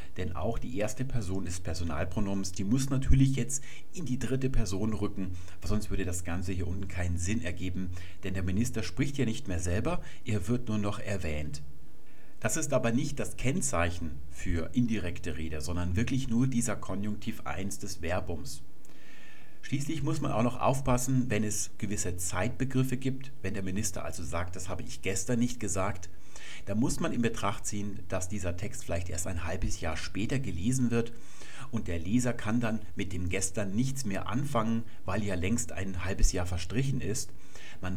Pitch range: 90-115 Hz